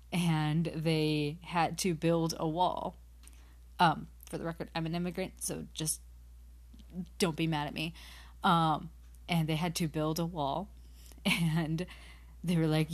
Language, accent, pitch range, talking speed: English, American, 145-180 Hz, 155 wpm